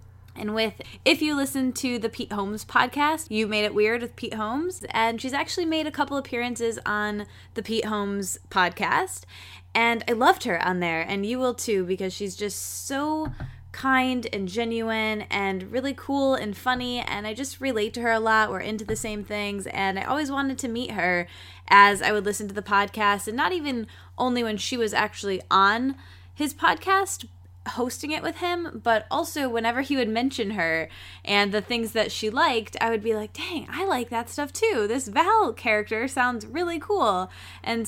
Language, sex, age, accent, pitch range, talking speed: English, female, 10-29, American, 200-260 Hz, 195 wpm